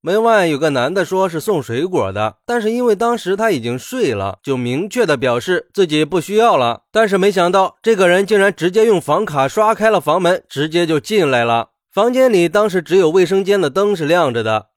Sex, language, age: male, Chinese, 20-39